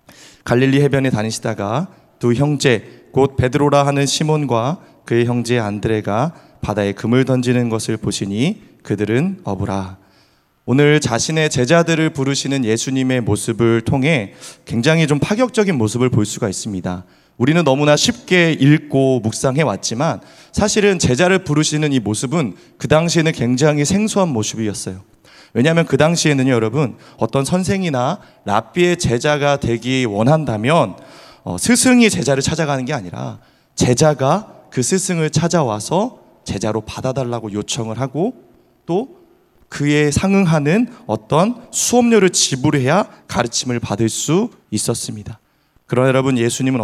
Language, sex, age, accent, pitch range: Korean, male, 30-49, native, 115-160 Hz